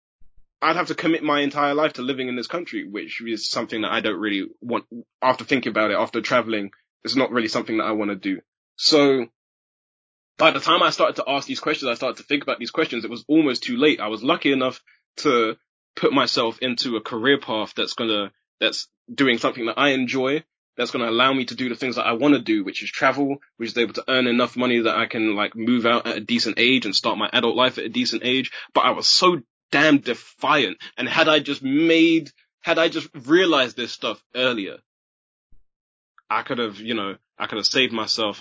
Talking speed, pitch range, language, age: 230 wpm, 115-155 Hz, English, 20-39